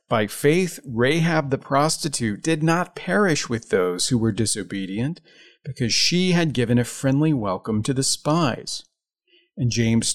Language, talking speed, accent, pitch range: English, 150 wpm, American, 120-160 Hz